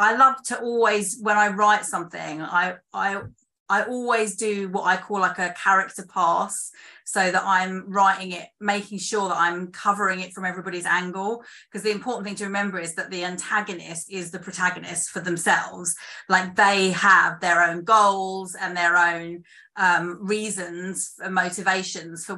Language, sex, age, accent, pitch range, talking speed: English, female, 30-49, British, 180-205 Hz, 170 wpm